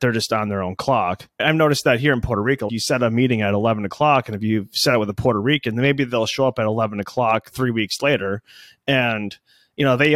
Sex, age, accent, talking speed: male, 30-49, American, 255 wpm